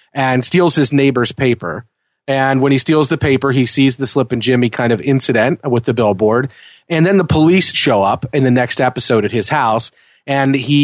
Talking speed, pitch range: 210 wpm, 120-150 Hz